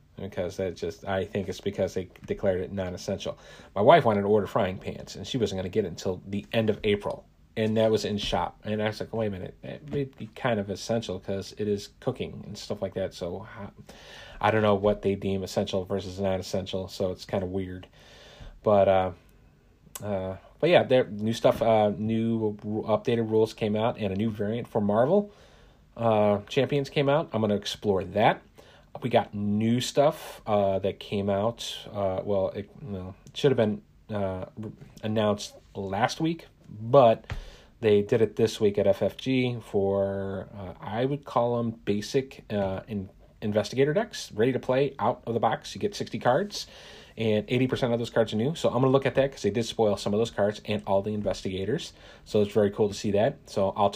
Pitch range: 100-115 Hz